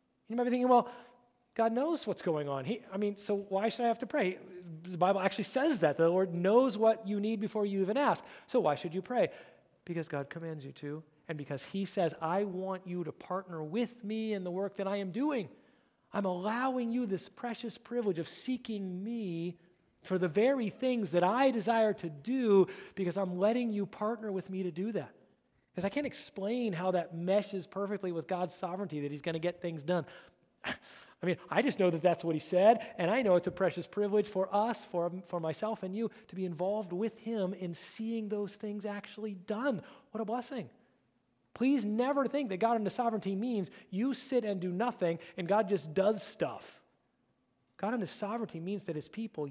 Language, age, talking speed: English, 40-59, 205 wpm